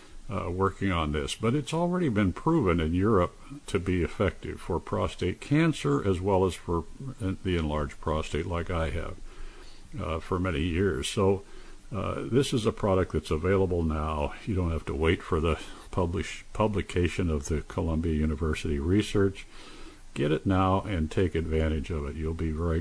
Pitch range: 80-105 Hz